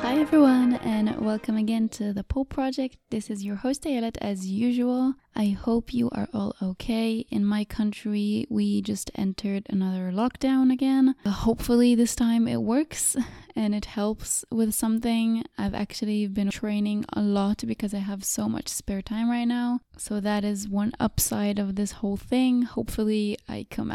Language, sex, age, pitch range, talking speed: English, female, 20-39, 210-250 Hz, 170 wpm